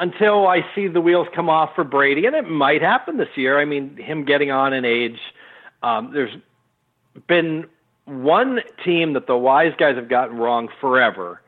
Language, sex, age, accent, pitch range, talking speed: English, male, 50-69, American, 125-165 Hz, 185 wpm